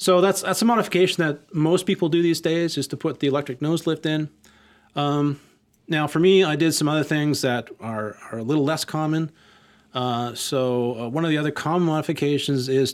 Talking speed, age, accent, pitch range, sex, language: 210 wpm, 30-49, American, 115-145 Hz, male, English